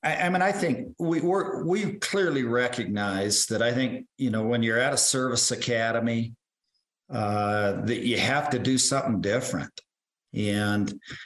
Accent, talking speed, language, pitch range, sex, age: American, 155 wpm, English, 115-130 Hz, male, 50-69